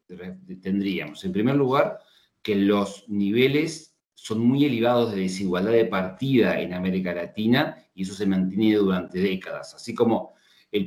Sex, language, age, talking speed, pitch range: male, Spanish, 40-59, 145 wpm, 95-115 Hz